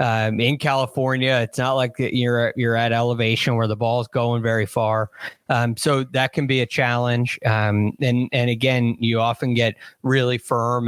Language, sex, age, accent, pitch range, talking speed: English, male, 20-39, American, 115-135 Hz, 175 wpm